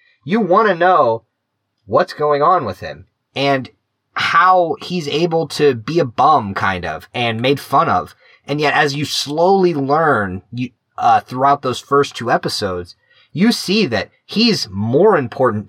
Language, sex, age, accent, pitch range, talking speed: English, male, 30-49, American, 110-155 Hz, 155 wpm